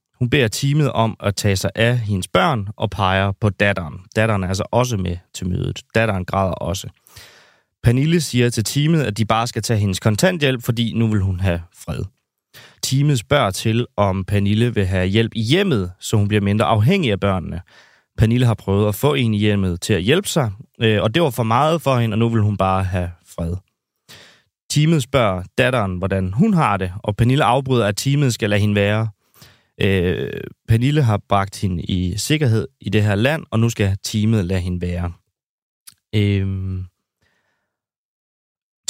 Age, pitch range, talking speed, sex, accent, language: 30-49, 100-125 Hz, 185 wpm, male, native, Danish